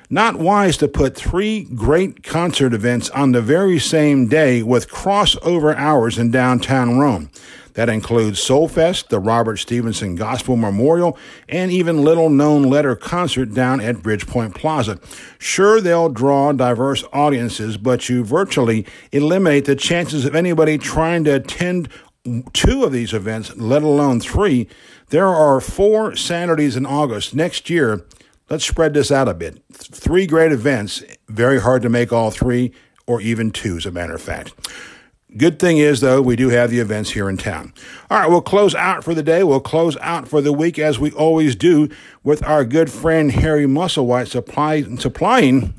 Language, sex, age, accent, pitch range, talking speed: English, male, 60-79, American, 115-155 Hz, 170 wpm